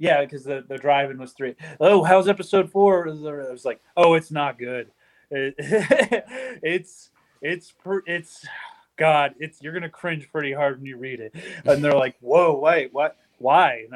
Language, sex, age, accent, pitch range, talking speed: English, male, 30-49, American, 140-180 Hz, 185 wpm